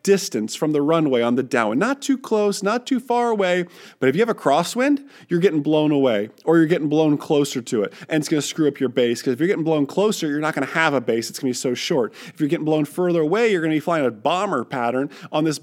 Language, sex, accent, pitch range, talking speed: English, male, American, 140-195 Hz, 285 wpm